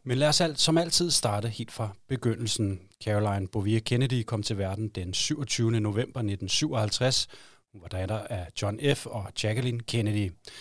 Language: Danish